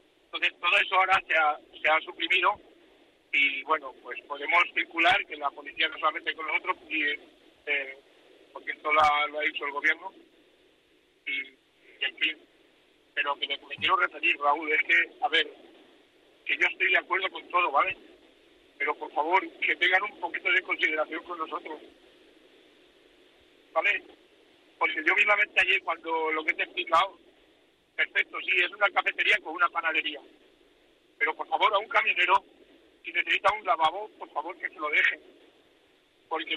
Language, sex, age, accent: Spanish, male, 50-69, Spanish